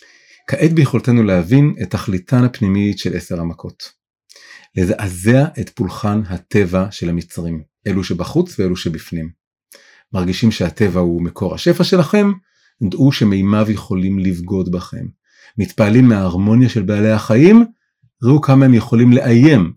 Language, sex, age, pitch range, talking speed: Hebrew, male, 40-59, 100-135 Hz, 120 wpm